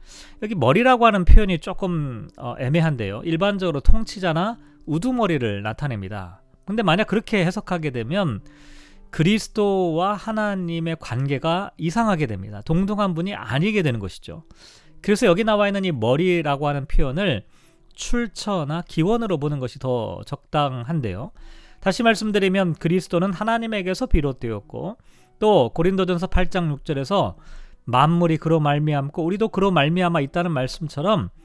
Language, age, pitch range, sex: Korean, 40-59, 140-195 Hz, male